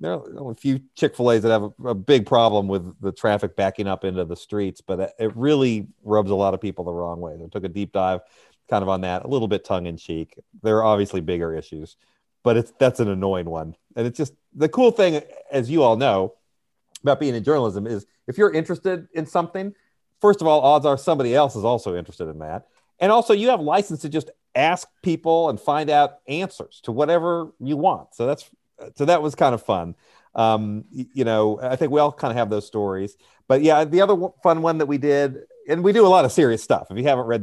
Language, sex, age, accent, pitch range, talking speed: English, male, 40-59, American, 100-150 Hz, 235 wpm